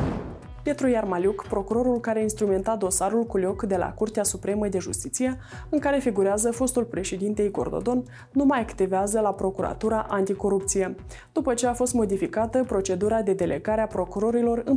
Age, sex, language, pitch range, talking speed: 20-39, female, Romanian, 195-235 Hz, 150 wpm